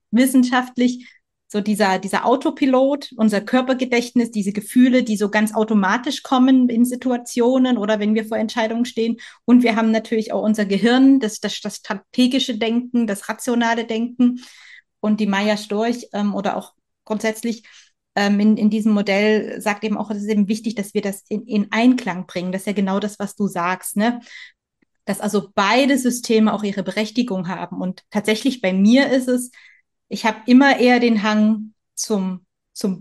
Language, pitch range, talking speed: German, 205-240 Hz, 175 wpm